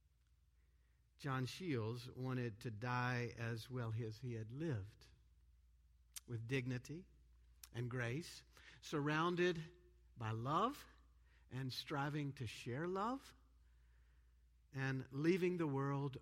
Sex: male